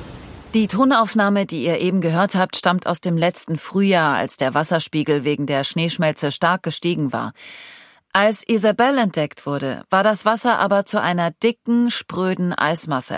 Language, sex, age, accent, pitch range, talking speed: German, female, 40-59, German, 150-215 Hz, 155 wpm